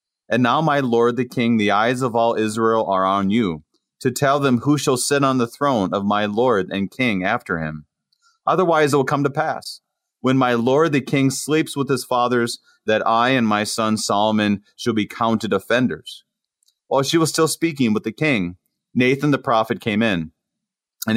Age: 30-49